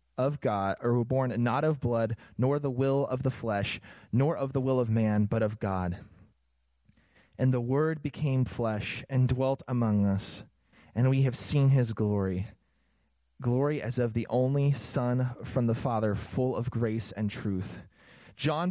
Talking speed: 170 wpm